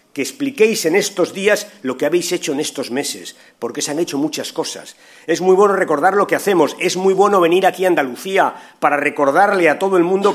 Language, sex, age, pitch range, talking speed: Spanish, male, 40-59, 155-210 Hz, 220 wpm